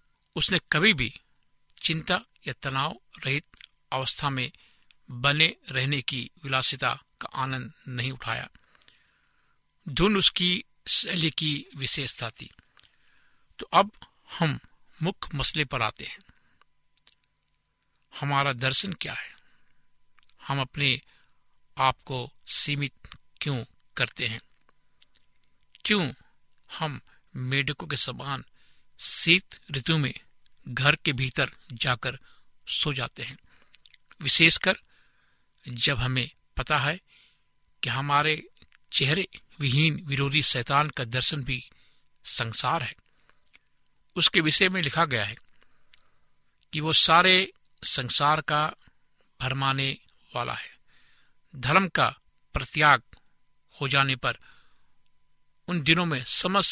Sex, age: male, 60-79